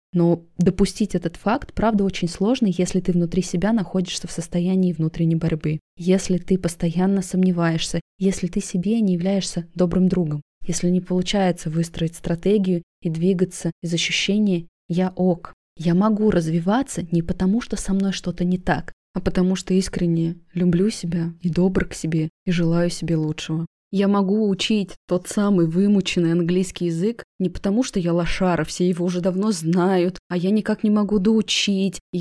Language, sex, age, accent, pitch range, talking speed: Russian, female, 20-39, native, 170-195 Hz, 160 wpm